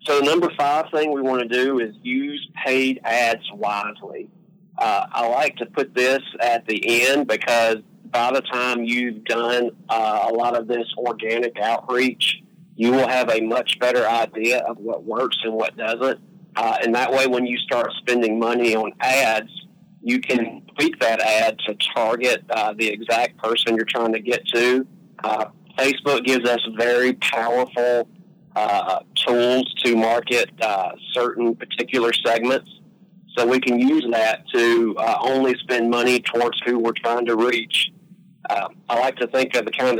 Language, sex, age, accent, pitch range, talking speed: English, male, 40-59, American, 115-135 Hz, 170 wpm